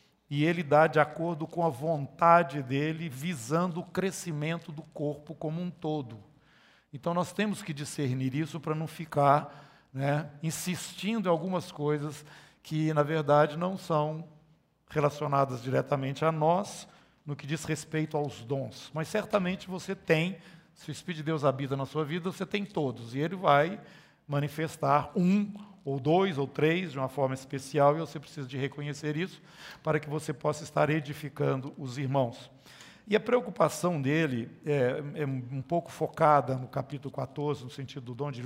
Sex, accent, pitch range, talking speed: male, Brazilian, 145-170 Hz, 165 wpm